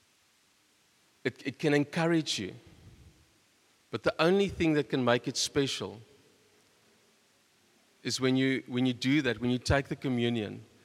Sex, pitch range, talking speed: male, 110-130 Hz, 145 wpm